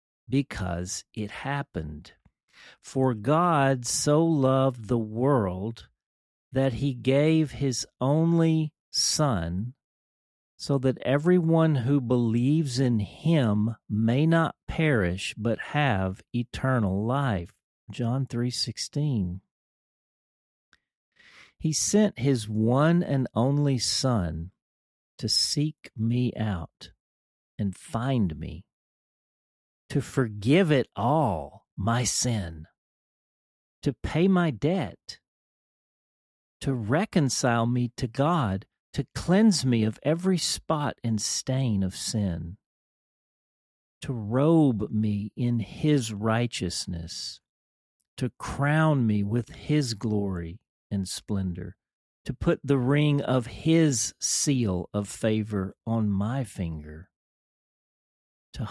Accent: American